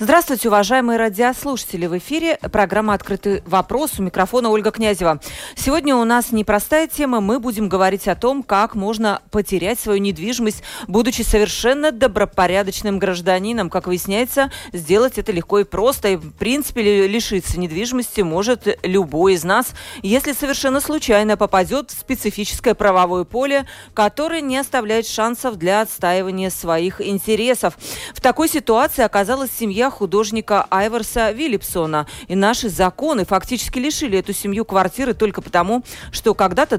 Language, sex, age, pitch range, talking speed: Russian, female, 40-59, 195-250 Hz, 135 wpm